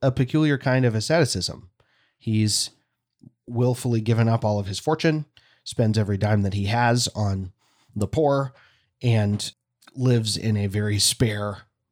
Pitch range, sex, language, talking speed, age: 105-130 Hz, male, English, 140 wpm, 30-49